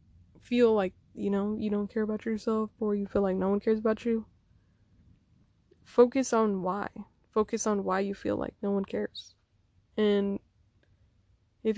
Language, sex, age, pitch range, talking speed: English, female, 20-39, 195-230 Hz, 165 wpm